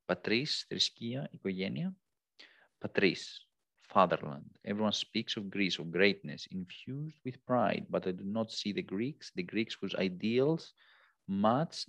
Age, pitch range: 40-59, 100-125 Hz